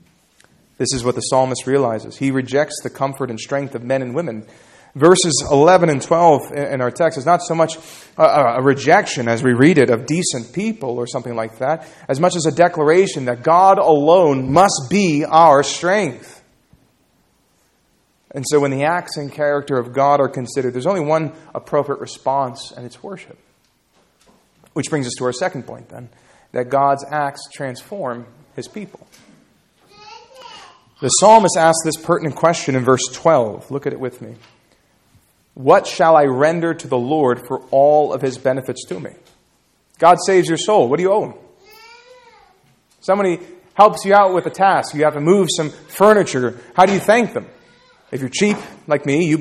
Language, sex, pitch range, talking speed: English, male, 130-175 Hz, 175 wpm